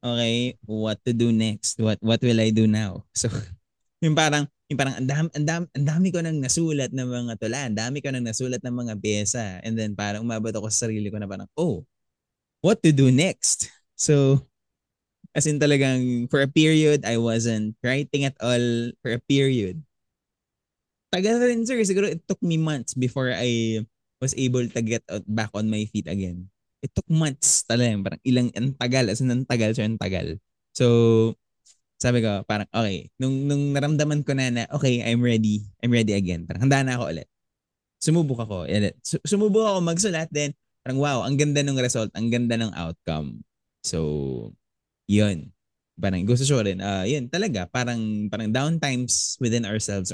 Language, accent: Filipino, native